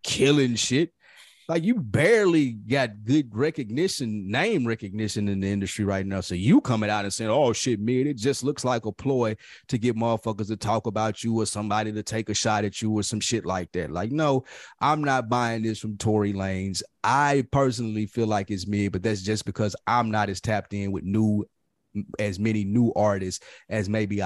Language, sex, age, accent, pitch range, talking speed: English, male, 30-49, American, 100-120 Hz, 205 wpm